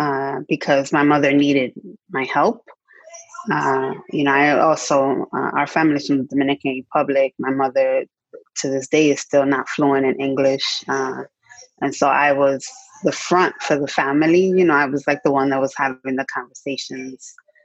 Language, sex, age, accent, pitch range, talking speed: English, female, 20-39, American, 140-170 Hz, 180 wpm